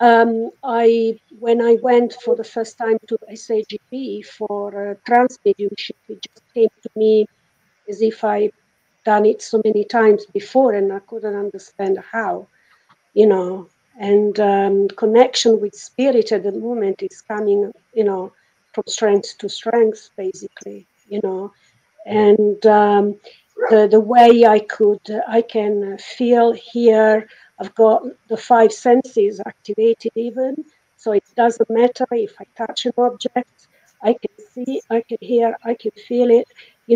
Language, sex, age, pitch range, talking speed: English, female, 50-69, 210-240 Hz, 150 wpm